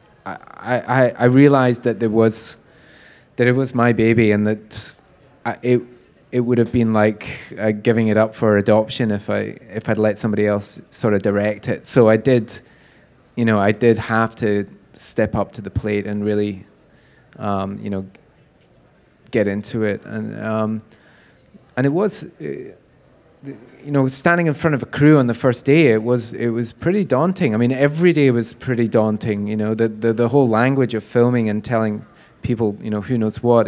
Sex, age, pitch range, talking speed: male, 20-39, 105-125 Hz, 190 wpm